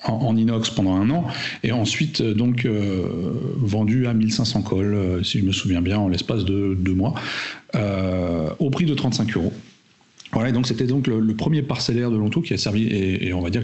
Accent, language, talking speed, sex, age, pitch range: French, French, 220 wpm, male, 40-59, 100-130 Hz